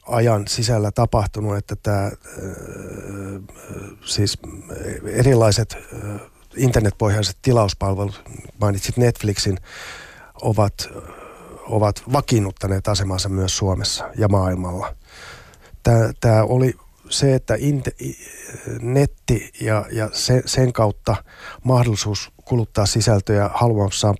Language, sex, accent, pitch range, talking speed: Finnish, male, native, 100-115 Hz, 90 wpm